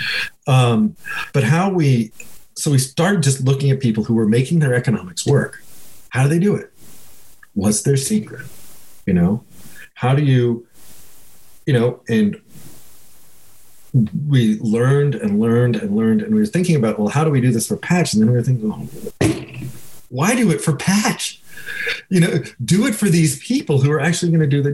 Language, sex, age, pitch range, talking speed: English, male, 40-59, 110-165 Hz, 185 wpm